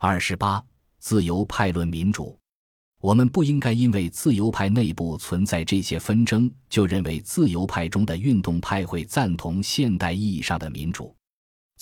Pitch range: 85-115 Hz